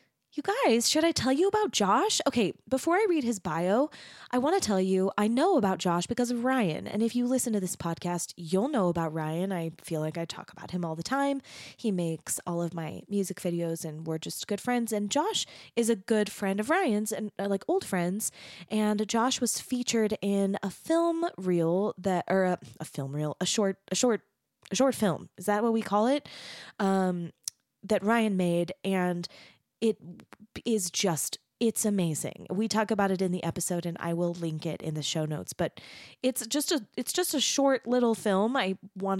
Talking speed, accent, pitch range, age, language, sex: 210 wpm, American, 175-235 Hz, 20-39, English, female